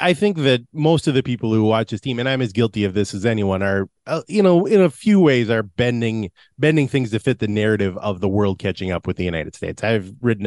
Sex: male